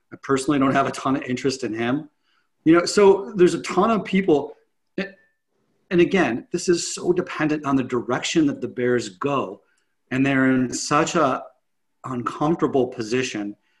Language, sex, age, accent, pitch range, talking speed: English, male, 30-49, American, 130-180 Hz, 165 wpm